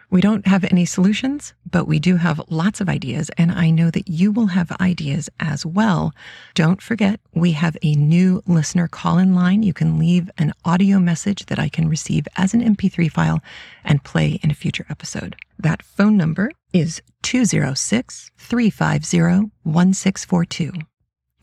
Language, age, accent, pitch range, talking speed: English, 40-59, American, 155-185 Hz, 155 wpm